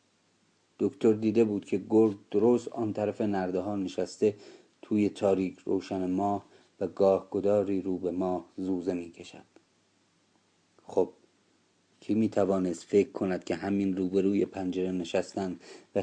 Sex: male